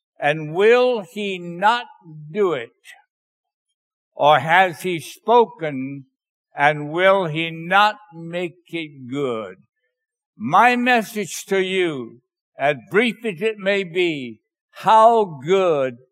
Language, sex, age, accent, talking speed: English, male, 60-79, American, 110 wpm